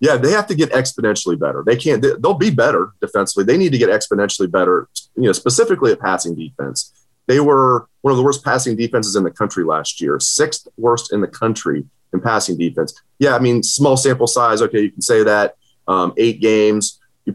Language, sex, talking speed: English, male, 215 wpm